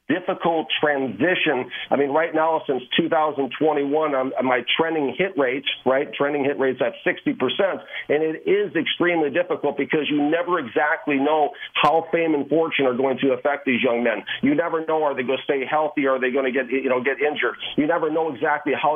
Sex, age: male, 50-69